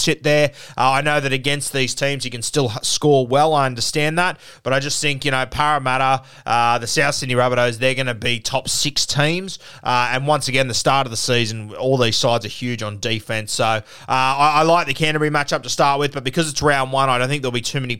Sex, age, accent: male, 20-39, Australian